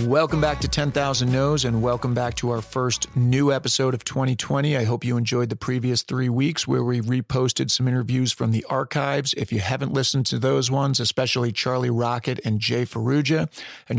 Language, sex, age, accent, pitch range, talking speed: English, male, 40-59, American, 115-135 Hz, 195 wpm